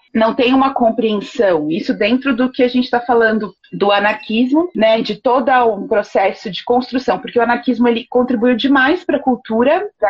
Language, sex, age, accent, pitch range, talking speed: Portuguese, female, 30-49, Brazilian, 215-280 Hz, 180 wpm